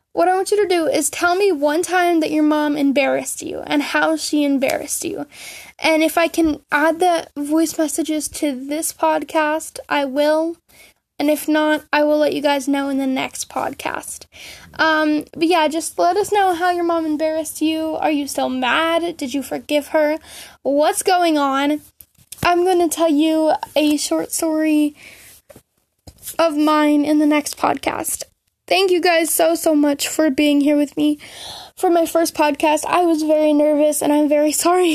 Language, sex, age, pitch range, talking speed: English, female, 10-29, 295-330 Hz, 185 wpm